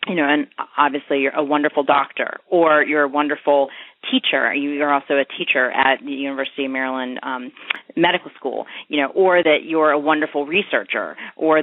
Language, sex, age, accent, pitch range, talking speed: English, female, 30-49, American, 140-160 Hz, 175 wpm